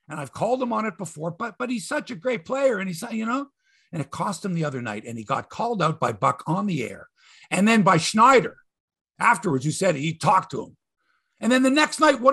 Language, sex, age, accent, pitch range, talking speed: English, male, 50-69, American, 150-250 Hz, 260 wpm